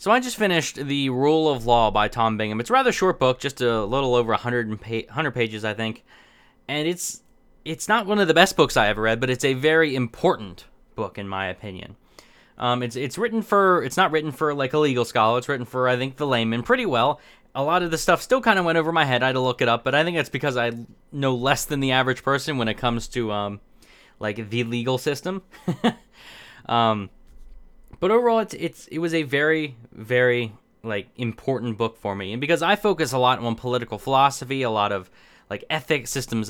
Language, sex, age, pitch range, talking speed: English, male, 20-39, 115-160 Hz, 230 wpm